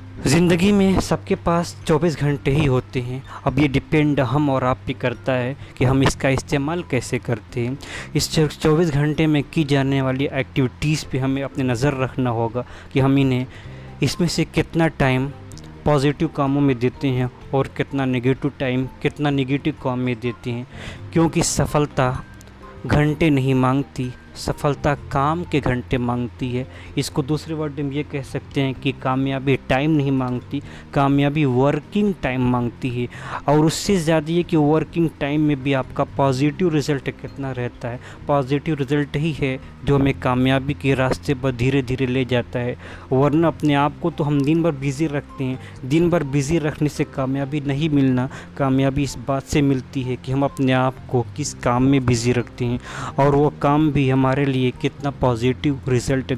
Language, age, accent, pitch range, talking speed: Hindi, 20-39, native, 125-145 Hz, 175 wpm